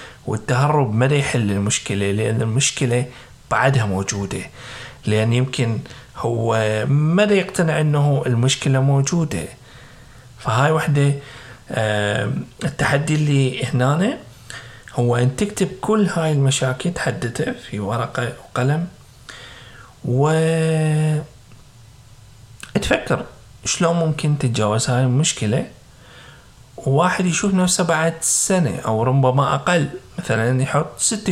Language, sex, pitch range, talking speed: Arabic, male, 115-145 Hz, 95 wpm